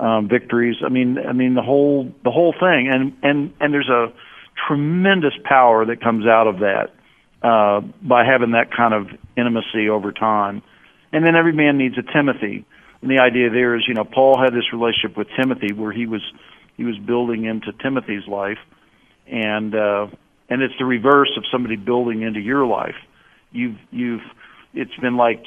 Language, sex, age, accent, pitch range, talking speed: English, male, 50-69, American, 115-140 Hz, 185 wpm